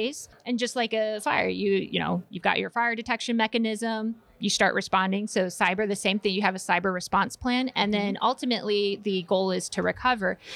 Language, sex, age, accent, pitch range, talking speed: English, female, 30-49, American, 185-225 Hz, 210 wpm